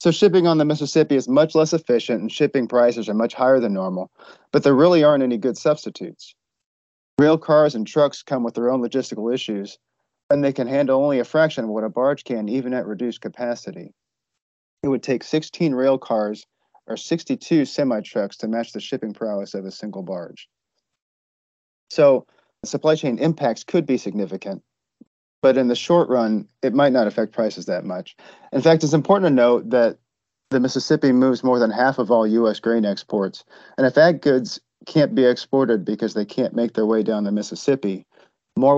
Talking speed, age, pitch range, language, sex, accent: 190 wpm, 40-59, 110-140 Hz, English, male, American